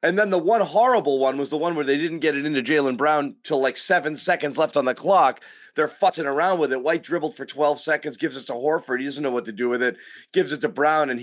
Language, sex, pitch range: English, male, 120-170 Hz